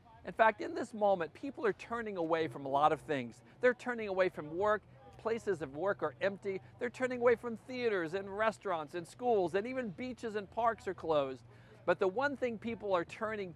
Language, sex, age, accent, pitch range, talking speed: English, male, 50-69, American, 140-205 Hz, 210 wpm